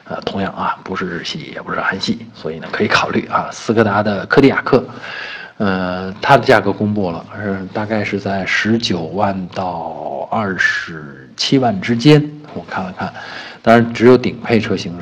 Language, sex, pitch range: Chinese, male, 95-110 Hz